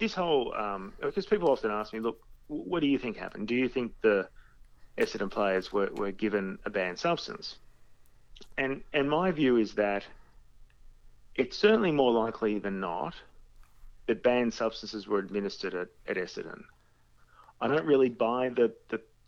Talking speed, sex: 160 wpm, male